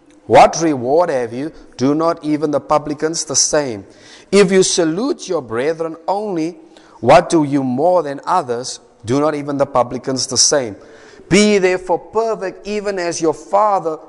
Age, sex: 50-69, male